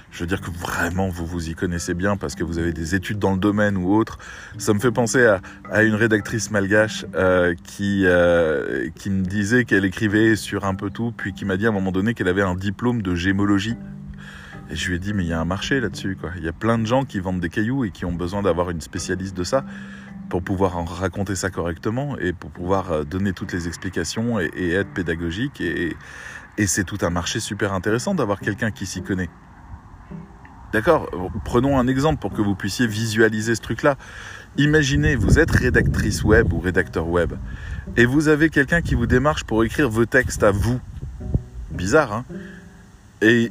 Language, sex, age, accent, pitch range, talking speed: French, male, 20-39, French, 90-120 Hz, 210 wpm